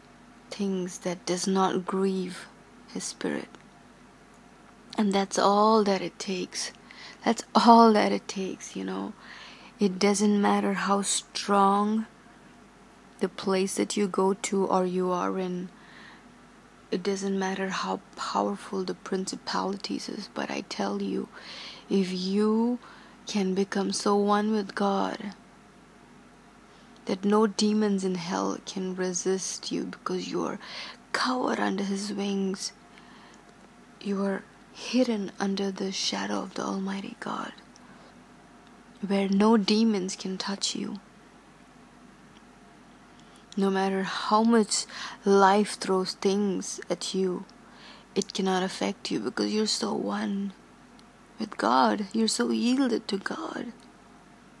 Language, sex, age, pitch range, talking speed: English, female, 20-39, 190-220 Hz, 120 wpm